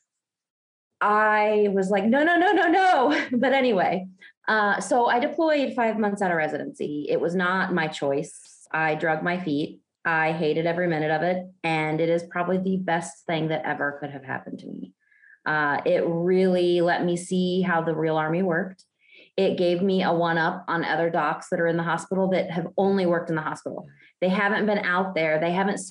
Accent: American